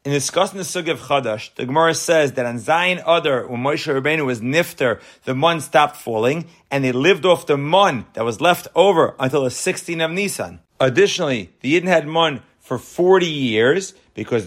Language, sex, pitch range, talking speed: English, male, 130-180 Hz, 190 wpm